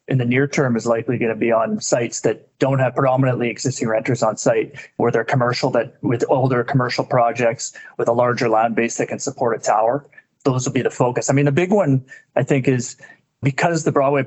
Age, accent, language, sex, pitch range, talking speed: 30-49, American, English, male, 120-140 Hz, 225 wpm